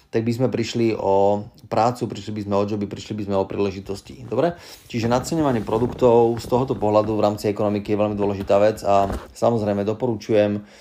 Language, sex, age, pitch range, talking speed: Slovak, male, 30-49, 105-115 Hz, 185 wpm